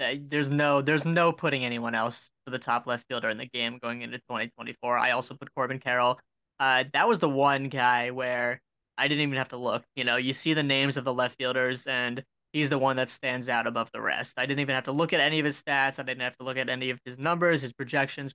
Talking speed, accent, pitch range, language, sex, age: 260 wpm, American, 125-150 Hz, English, male, 20-39